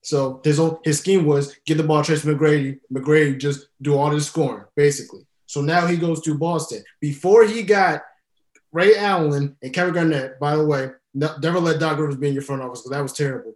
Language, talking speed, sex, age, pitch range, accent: English, 210 wpm, male, 20-39, 145-175 Hz, American